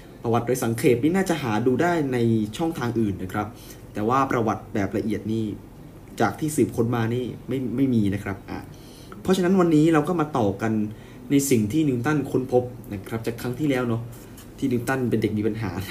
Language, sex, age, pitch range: Thai, male, 20-39, 110-140 Hz